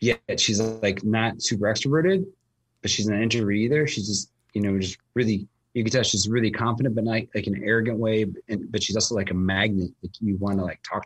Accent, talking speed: American, 245 wpm